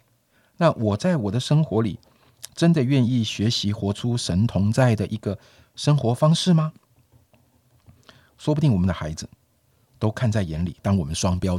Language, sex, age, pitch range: Chinese, male, 50-69, 100-145 Hz